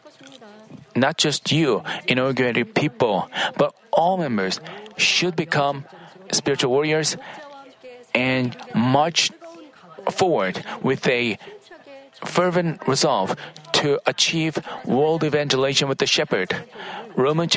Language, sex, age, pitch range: Korean, male, 40-59, 140-180 Hz